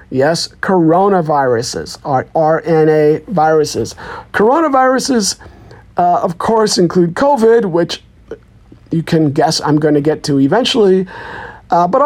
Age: 50-69